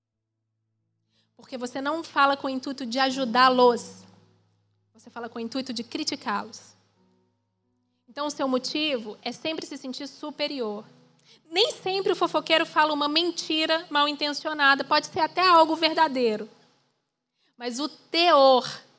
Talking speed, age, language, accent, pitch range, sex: 130 wpm, 20-39, Portuguese, Brazilian, 200-285 Hz, female